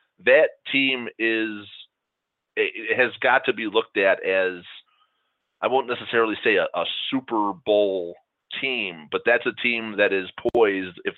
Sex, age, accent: male, 30-49, American